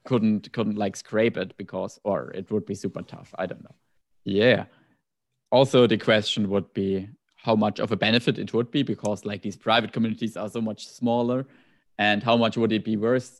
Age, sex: 20-39, male